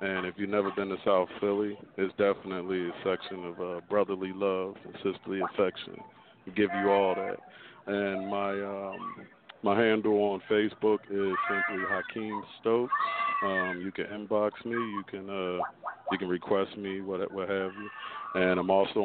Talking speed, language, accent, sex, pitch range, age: 170 wpm, English, American, male, 95-105 Hz, 50-69